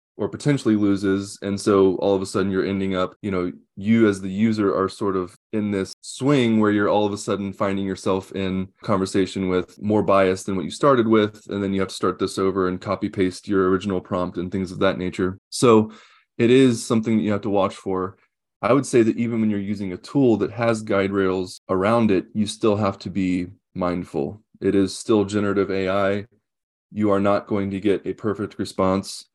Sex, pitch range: male, 95-110 Hz